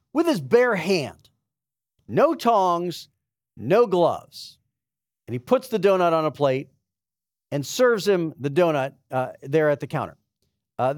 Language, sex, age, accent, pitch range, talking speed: English, male, 40-59, American, 140-195 Hz, 150 wpm